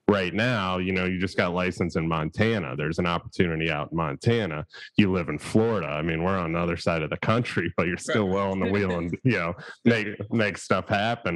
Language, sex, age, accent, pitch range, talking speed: English, male, 30-49, American, 90-115 Hz, 230 wpm